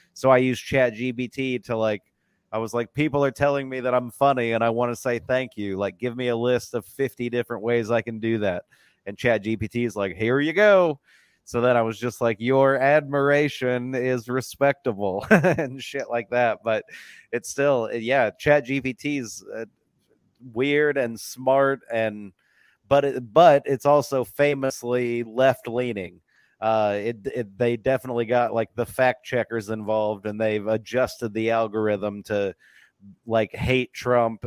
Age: 30-49